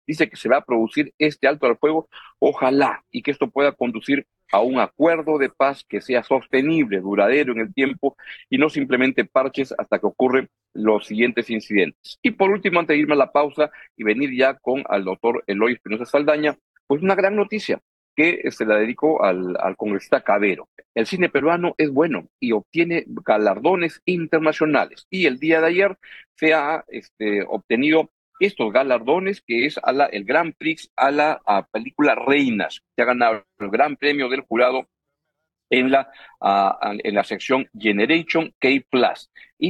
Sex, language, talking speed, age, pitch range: male, Spanish, 175 wpm, 50-69, 120-160 Hz